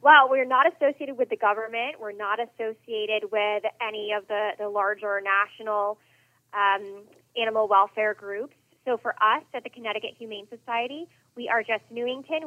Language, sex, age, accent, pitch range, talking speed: English, female, 20-39, American, 195-235 Hz, 160 wpm